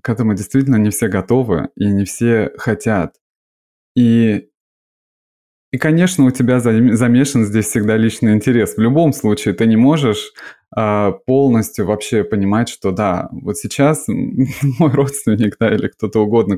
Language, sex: Russian, male